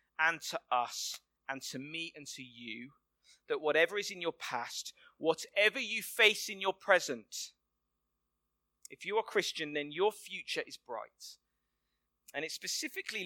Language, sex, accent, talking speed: English, male, British, 150 wpm